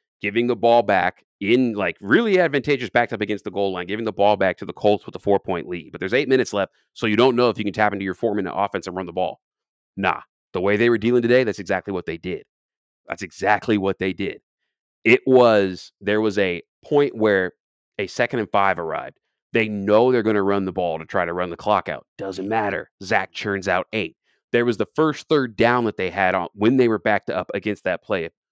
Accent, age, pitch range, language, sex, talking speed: American, 30-49, 95-120 Hz, English, male, 245 wpm